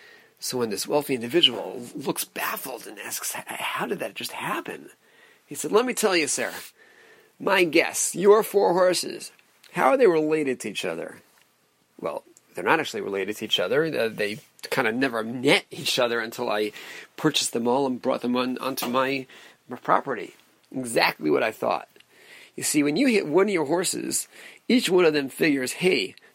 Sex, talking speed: male, 180 wpm